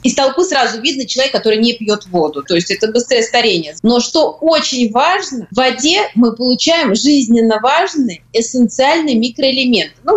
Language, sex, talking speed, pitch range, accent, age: Russian, female, 160 wpm, 220-280 Hz, native, 30-49